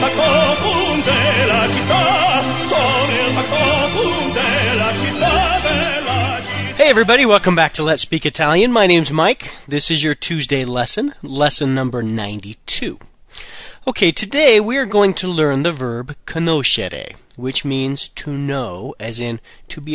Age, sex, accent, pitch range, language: 40-59, male, American, 120-170 Hz, Italian